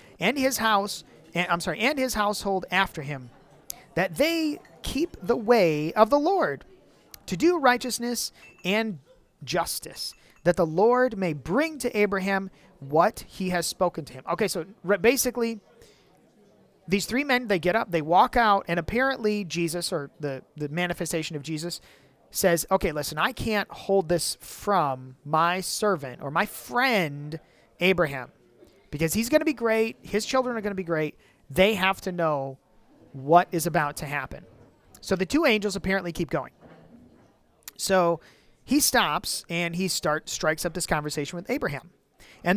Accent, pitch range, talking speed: American, 165-230 Hz, 160 wpm